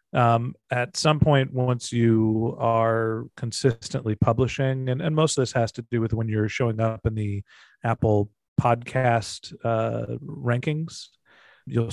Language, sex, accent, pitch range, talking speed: English, male, American, 110-125 Hz, 145 wpm